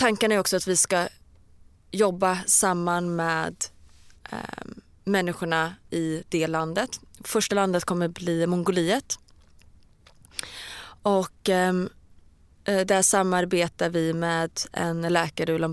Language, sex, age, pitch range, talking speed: English, female, 20-39, 130-185 Hz, 105 wpm